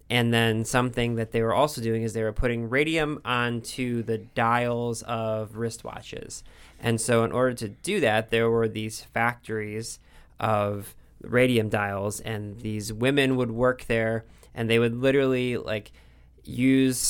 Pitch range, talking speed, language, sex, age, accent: 110-125 Hz, 155 wpm, English, male, 20-39, American